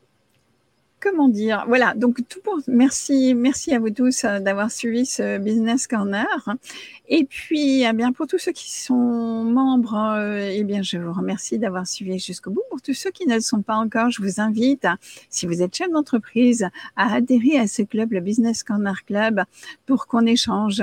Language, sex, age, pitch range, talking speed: French, female, 50-69, 200-255 Hz, 185 wpm